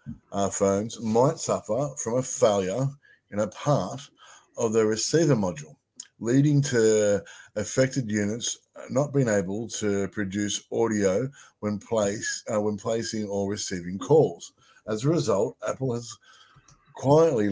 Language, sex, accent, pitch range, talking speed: English, male, Australian, 100-120 Hz, 130 wpm